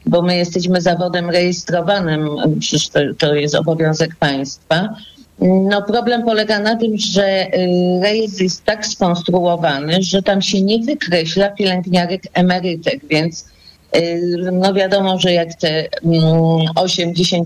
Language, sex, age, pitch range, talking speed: Polish, female, 40-59, 170-200 Hz, 115 wpm